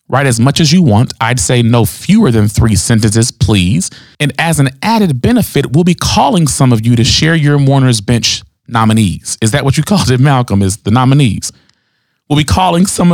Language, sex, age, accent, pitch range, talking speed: English, male, 40-59, American, 110-140 Hz, 205 wpm